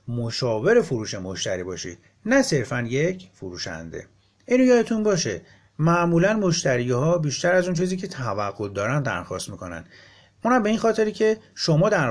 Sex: male